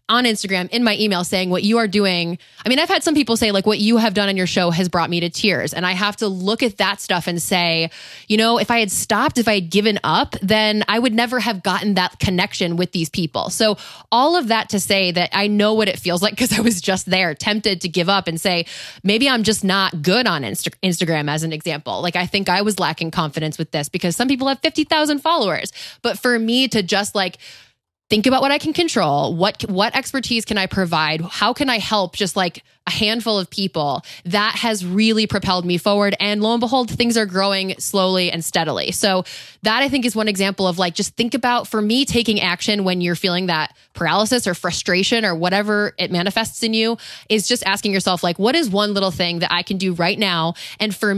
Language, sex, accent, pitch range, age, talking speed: English, female, American, 180-220 Hz, 20-39, 235 wpm